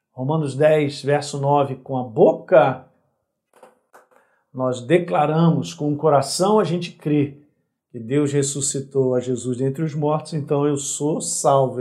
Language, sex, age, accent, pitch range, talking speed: Portuguese, male, 50-69, Brazilian, 130-160 Hz, 135 wpm